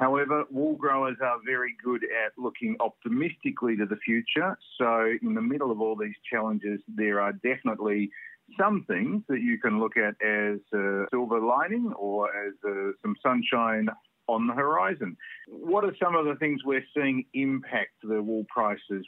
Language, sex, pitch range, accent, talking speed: English, male, 105-145 Hz, Australian, 165 wpm